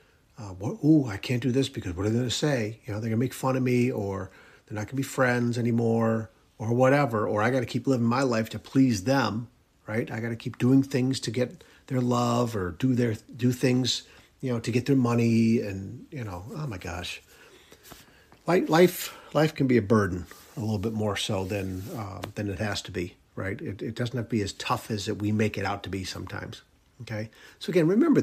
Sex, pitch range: male, 110-145 Hz